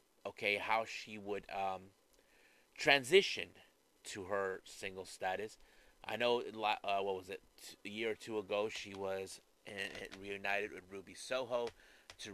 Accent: American